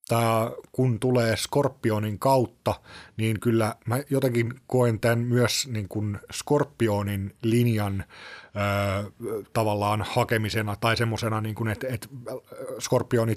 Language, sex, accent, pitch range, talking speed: Finnish, male, native, 105-120 Hz, 90 wpm